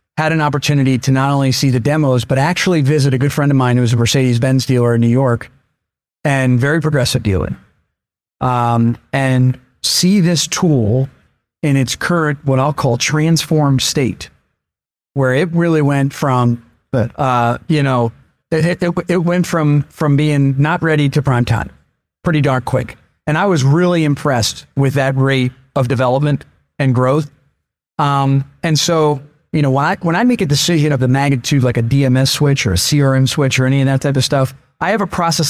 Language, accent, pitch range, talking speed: English, American, 130-160 Hz, 185 wpm